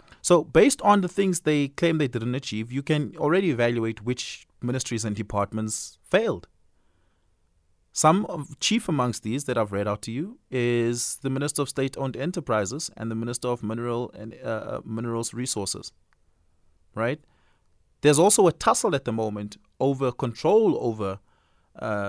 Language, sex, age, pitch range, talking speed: English, male, 30-49, 95-150 Hz, 155 wpm